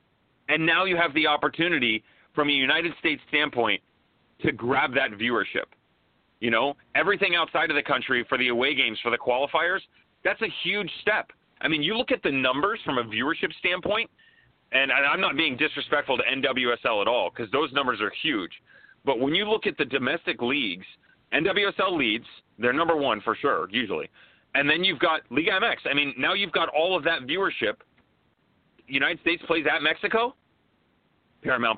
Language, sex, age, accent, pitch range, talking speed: English, male, 30-49, American, 125-160 Hz, 180 wpm